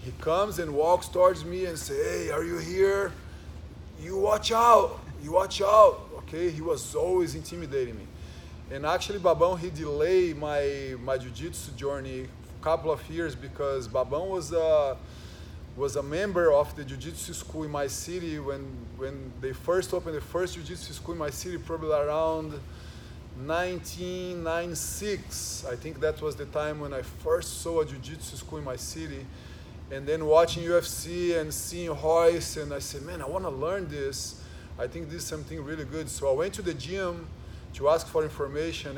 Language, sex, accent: English, male, Brazilian